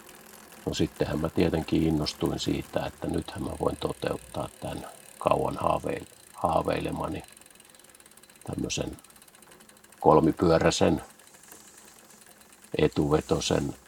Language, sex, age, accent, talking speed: Finnish, male, 50-69, native, 80 wpm